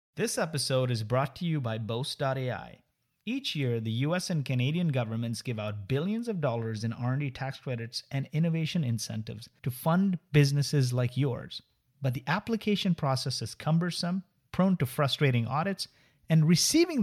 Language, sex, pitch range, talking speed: English, male, 120-155 Hz, 155 wpm